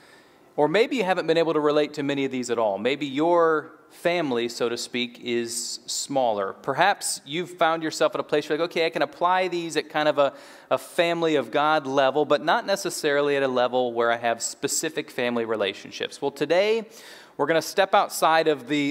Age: 30-49